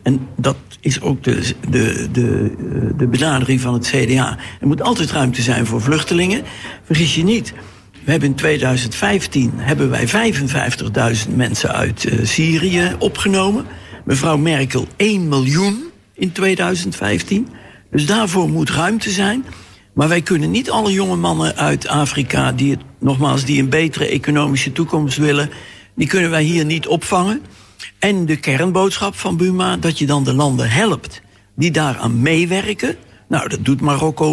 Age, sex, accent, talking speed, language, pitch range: 60-79, male, Dutch, 150 wpm, Dutch, 125-170 Hz